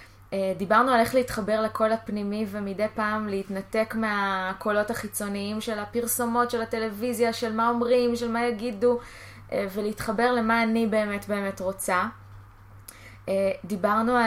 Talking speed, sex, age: 120 wpm, female, 20-39